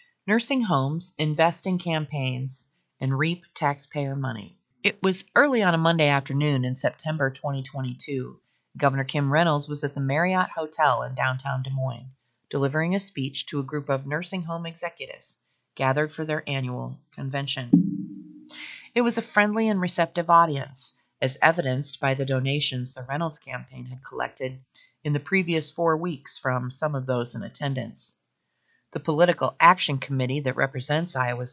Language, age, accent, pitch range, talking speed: English, 40-59, American, 130-165 Hz, 150 wpm